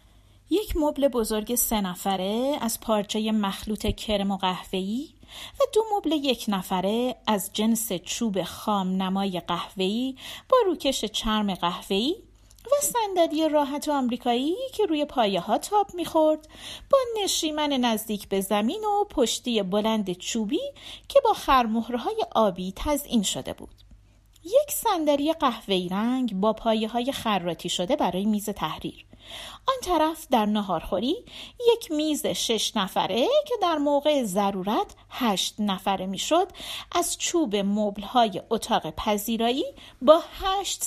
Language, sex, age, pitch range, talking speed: Persian, female, 40-59, 200-300 Hz, 125 wpm